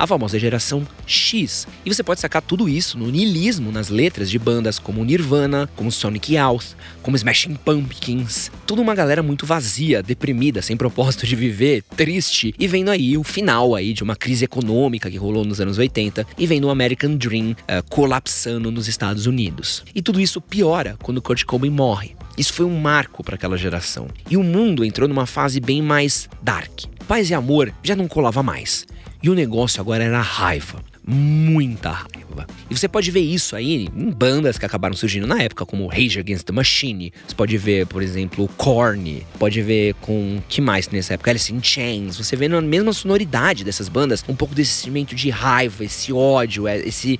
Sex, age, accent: male, 20-39, Brazilian